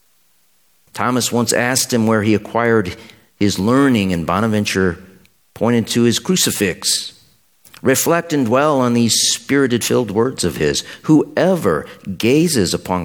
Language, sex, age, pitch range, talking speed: English, male, 50-69, 75-115 Hz, 125 wpm